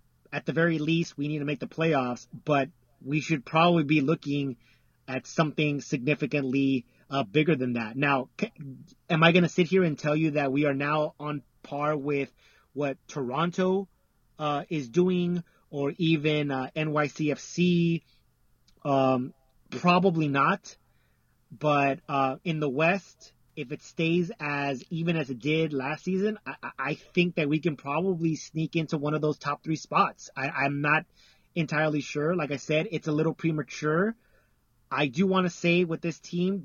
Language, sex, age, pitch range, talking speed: English, male, 30-49, 140-170 Hz, 165 wpm